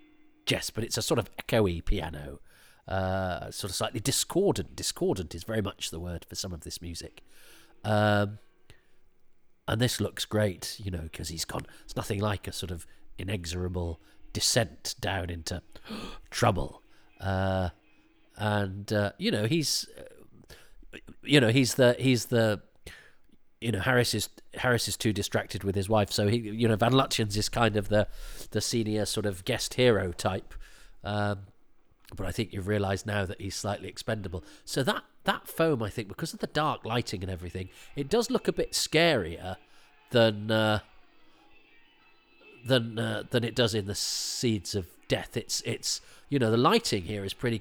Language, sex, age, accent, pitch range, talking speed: English, male, 40-59, British, 95-115 Hz, 175 wpm